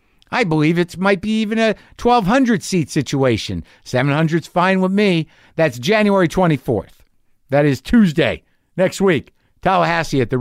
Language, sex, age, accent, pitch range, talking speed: English, male, 50-69, American, 115-160 Hz, 145 wpm